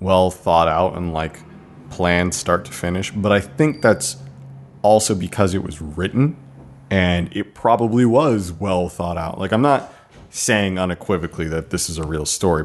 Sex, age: male, 30-49